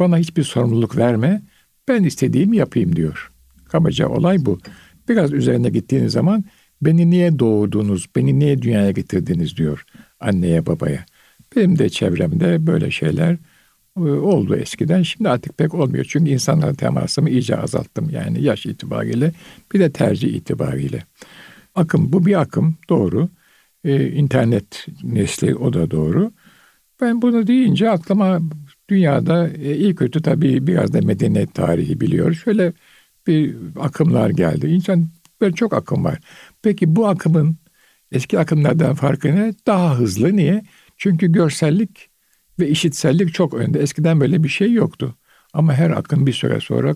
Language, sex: Turkish, male